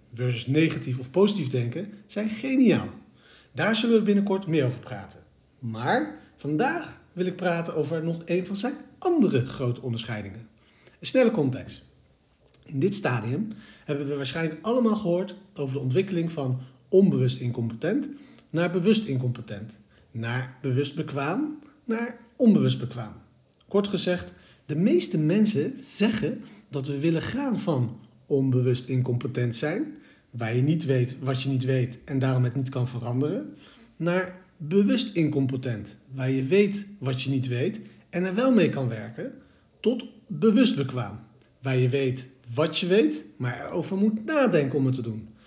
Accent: Dutch